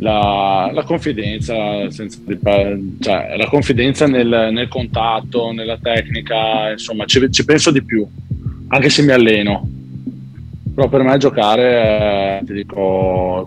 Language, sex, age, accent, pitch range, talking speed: Italian, male, 20-39, native, 95-115 Hz, 140 wpm